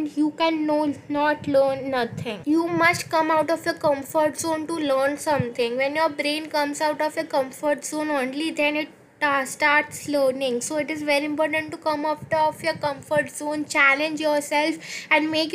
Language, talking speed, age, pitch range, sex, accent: English, 180 wpm, 10-29, 280-315 Hz, female, Indian